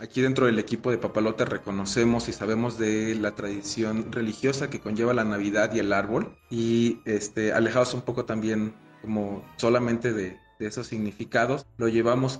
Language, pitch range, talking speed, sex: Spanish, 110-125 Hz, 165 wpm, male